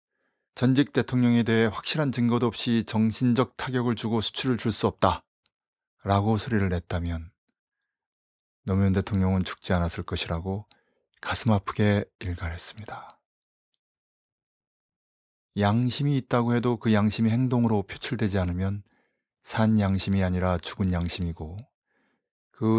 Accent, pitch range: native, 95-115 Hz